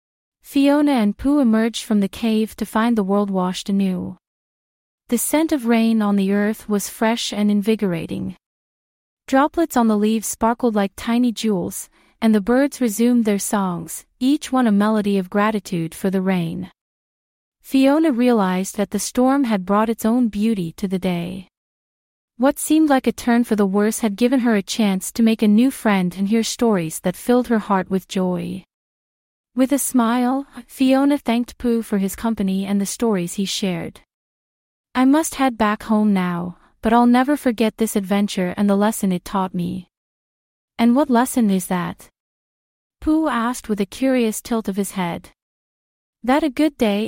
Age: 30-49